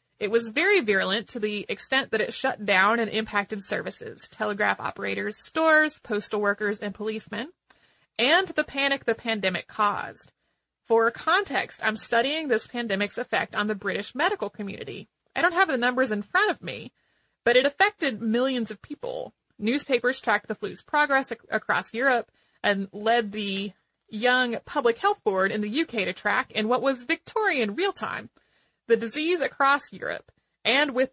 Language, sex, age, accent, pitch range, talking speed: English, female, 30-49, American, 210-275 Hz, 160 wpm